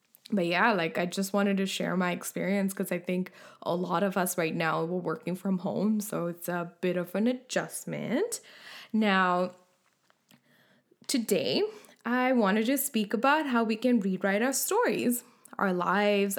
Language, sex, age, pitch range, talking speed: English, female, 10-29, 195-240 Hz, 165 wpm